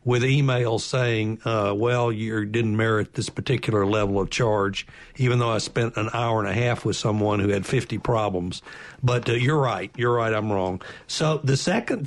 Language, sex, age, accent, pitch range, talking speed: English, male, 60-79, American, 110-130 Hz, 195 wpm